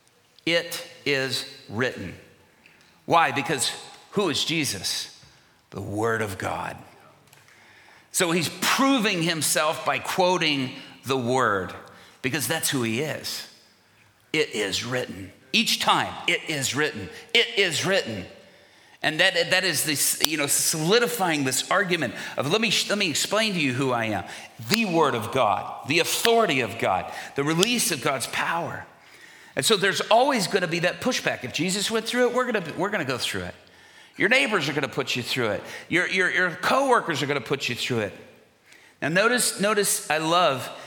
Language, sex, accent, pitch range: English, male, American, 135-190 Hz